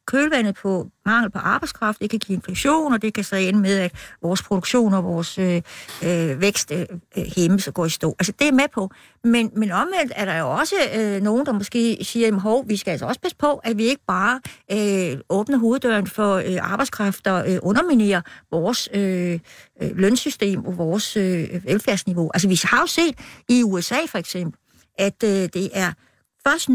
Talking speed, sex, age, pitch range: 195 wpm, female, 60-79, 190-245 Hz